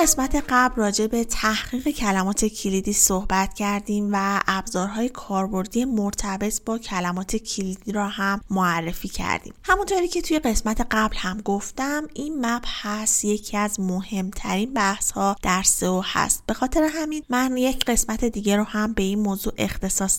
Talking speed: 155 wpm